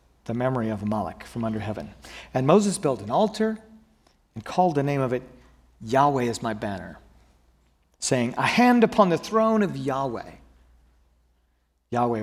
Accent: American